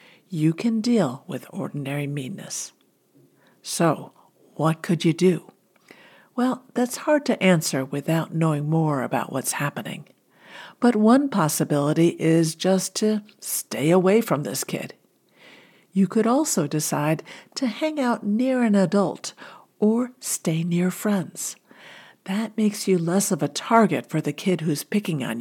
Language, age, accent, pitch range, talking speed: English, 60-79, American, 155-210 Hz, 140 wpm